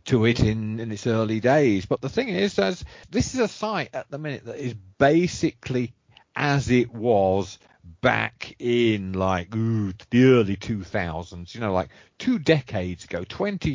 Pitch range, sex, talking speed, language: 95-125 Hz, male, 170 wpm, English